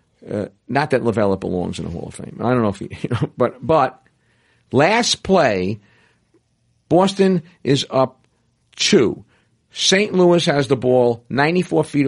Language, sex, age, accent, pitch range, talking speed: English, male, 50-69, American, 120-180 Hz, 160 wpm